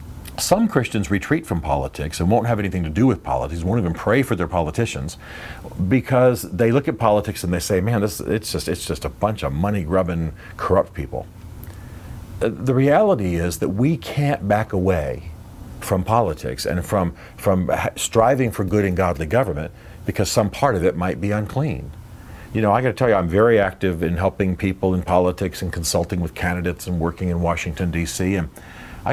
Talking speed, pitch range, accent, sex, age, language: 190 wpm, 90-110 Hz, American, male, 50-69, English